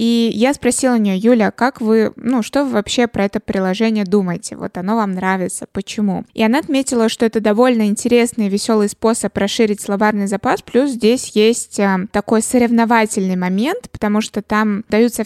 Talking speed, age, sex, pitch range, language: 175 wpm, 20-39, female, 200-240 Hz, Russian